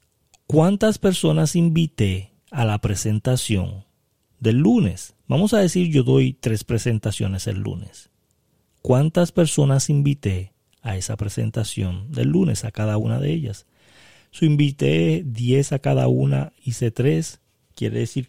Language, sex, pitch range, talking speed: Spanish, male, 105-150 Hz, 135 wpm